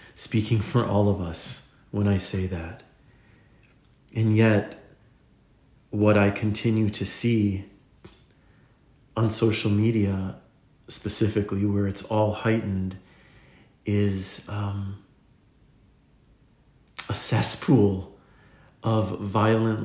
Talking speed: 90 wpm